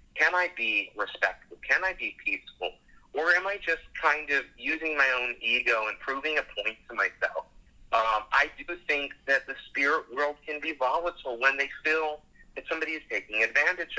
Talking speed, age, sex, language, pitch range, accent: 185 wpm, 30-49, male, English, 125-160 Hz, American